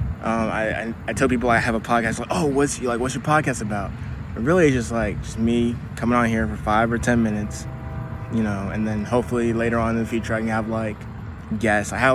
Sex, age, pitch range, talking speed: male, 20-39, 105-120 Hz, 245 wpm